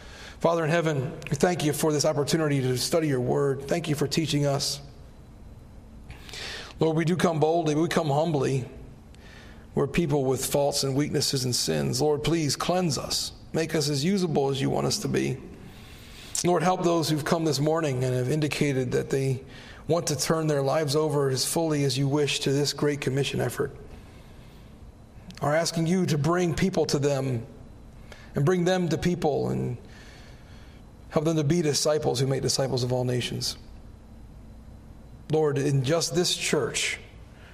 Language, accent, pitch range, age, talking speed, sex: English, American, 120-160 Hz, 40-59, 170 wpm, male